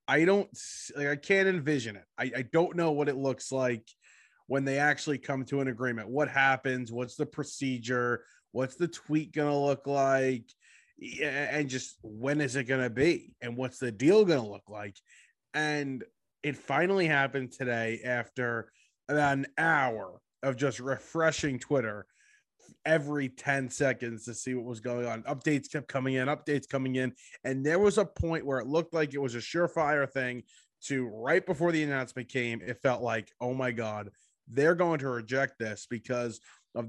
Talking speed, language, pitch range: 180 wpm, English, 120-145 Hz